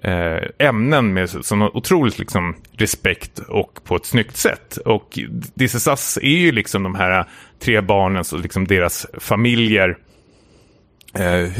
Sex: male